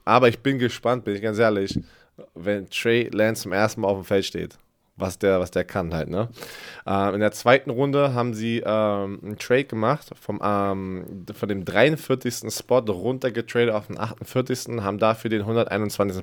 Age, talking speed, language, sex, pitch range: 20-39, 190 wpm, German, male, 100-120 Hz